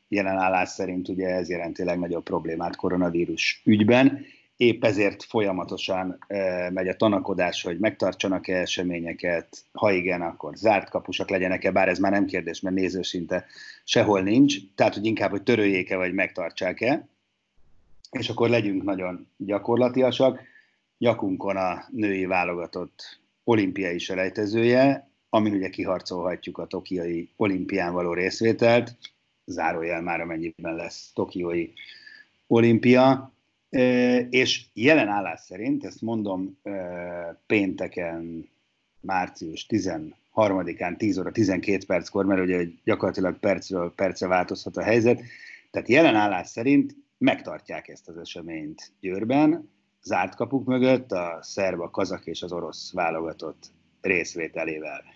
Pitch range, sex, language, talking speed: 90-120 Hz, male, Hungarian, 120 wpm